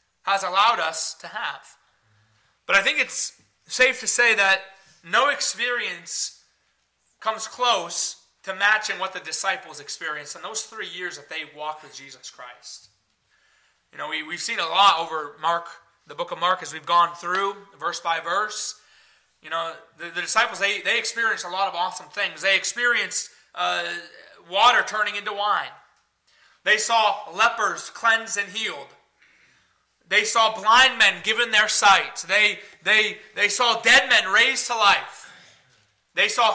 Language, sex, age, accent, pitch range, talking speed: English, male, 30-49, American, 180-230 Hz, 155 wpm